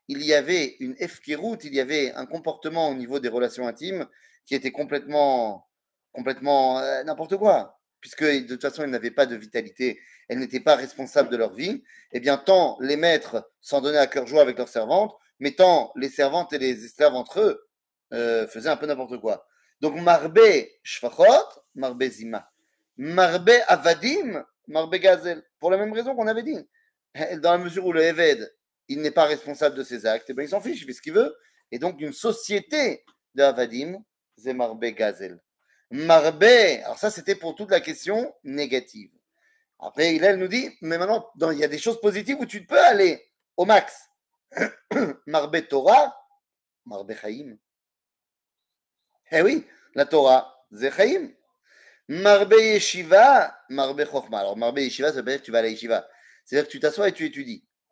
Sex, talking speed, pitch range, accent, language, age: male, 180 wpm, 135-225 Hz, French, French, 30-49